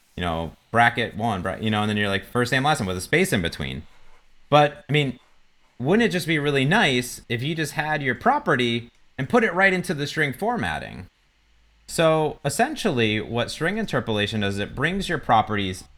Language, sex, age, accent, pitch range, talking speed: English, male, 30-49, American, 95-130 Hz, 195 wpm